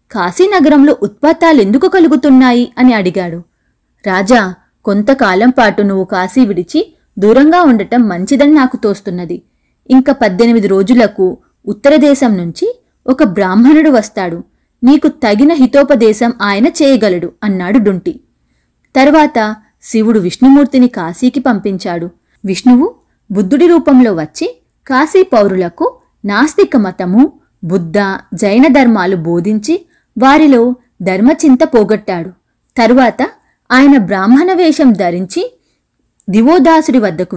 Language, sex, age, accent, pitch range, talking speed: Telugu, female, 20-39, native, 195-285 Hz, 95 wpm